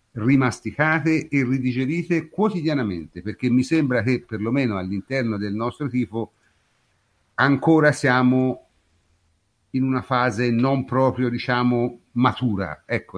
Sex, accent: male, native